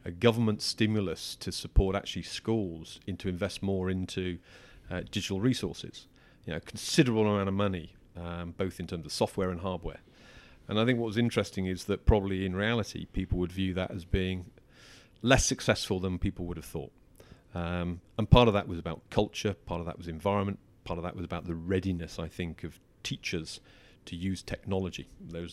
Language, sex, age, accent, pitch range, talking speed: English, male, 40-59, British, 90-110 Hz, 195 wpm